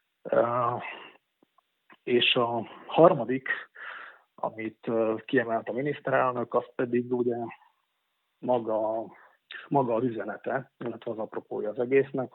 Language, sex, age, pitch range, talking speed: Hungarian, male, 40-59, 110-125 Hz, 100 wpm